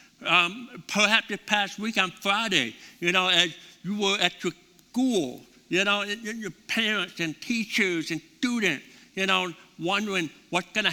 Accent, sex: American, male